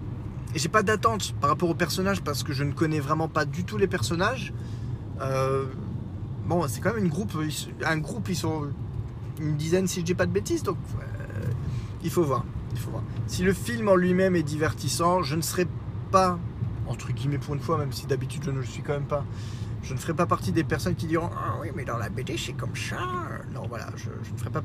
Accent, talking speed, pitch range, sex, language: French, 240 wpm, 115-150 Hz, male, French